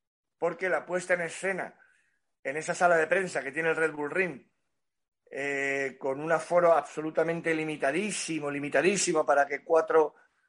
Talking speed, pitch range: 150 wpm, 150-195 Hz